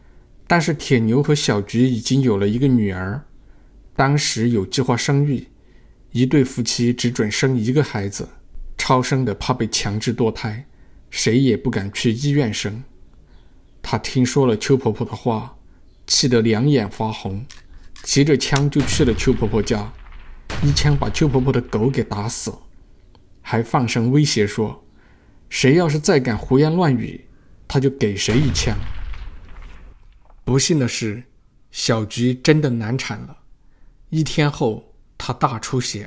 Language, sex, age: Chinese, male, 50-69